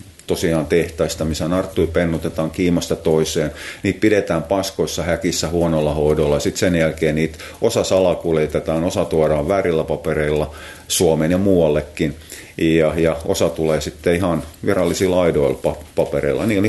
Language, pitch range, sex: Finnish, 80-130 Hz, male